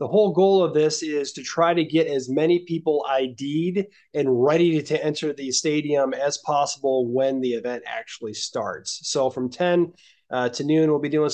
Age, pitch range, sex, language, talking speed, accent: 20-39, 135-170 Hz, male, English, 190 wpm, American